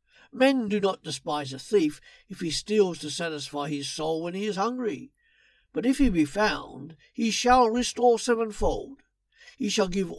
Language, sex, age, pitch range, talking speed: English, male, 60-79, 150-220 Hz, 170 wpm